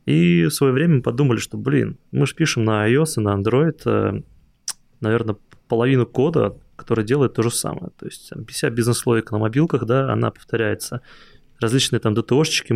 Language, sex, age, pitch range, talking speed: Russian, male, 20-39, 105-135 Hz, 175 wpm